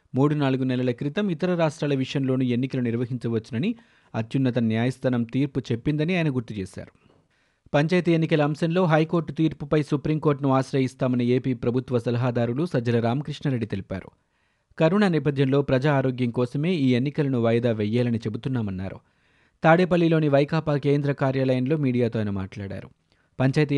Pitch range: 120-150 Hz